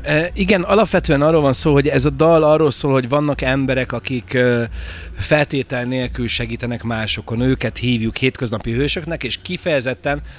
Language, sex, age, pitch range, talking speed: Hungarian, male, 30-49, 115-135 Hz, 145 wpm